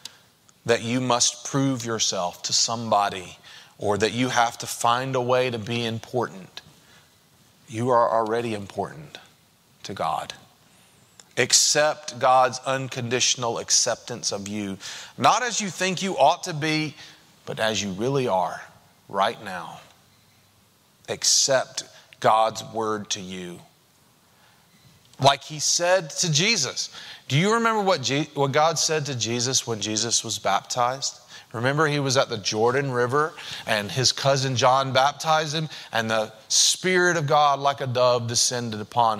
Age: 30-49